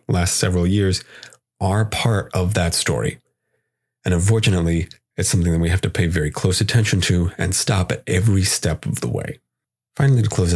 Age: 30-49